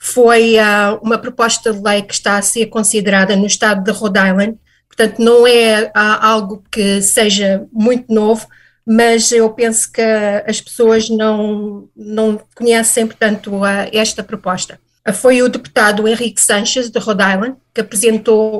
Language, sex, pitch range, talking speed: Portuguese, female, 210-235 Hz, 145 wpm